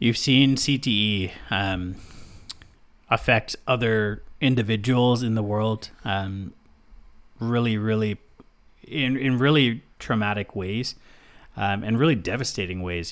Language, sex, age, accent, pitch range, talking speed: English, male, 30-49, American, 105-130 Hz, 105 wpm